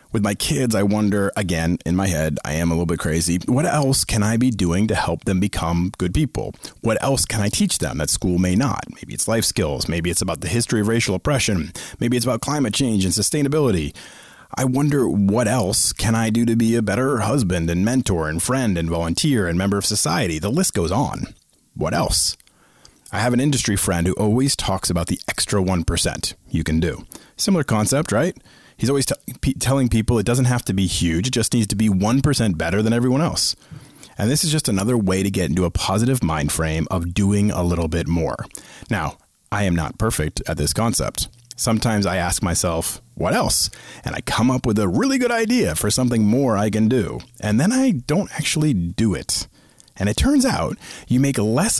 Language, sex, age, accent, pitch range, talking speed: English, male, 30-49, American, 90-130 Hz, 215 wpm